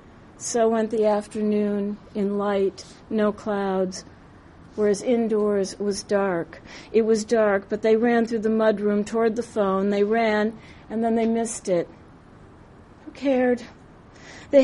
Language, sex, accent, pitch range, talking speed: English, female, American, 195-225 Hz, 145 wpm